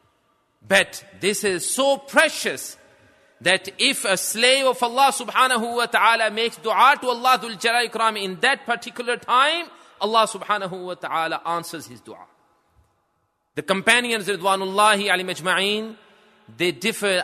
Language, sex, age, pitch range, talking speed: English, male, 30-49, 185-230 Hz, 125 wpm